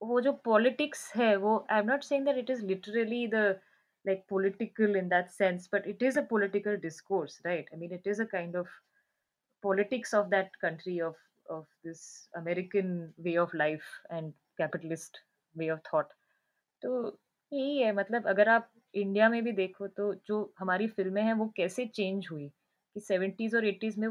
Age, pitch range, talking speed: 20-39, 175-225 Hz, 180 wpm